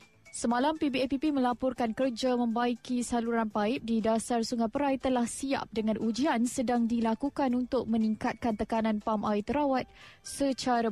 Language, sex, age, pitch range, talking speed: Malay, female, 20-39, 220-255 Hz, 130 wpm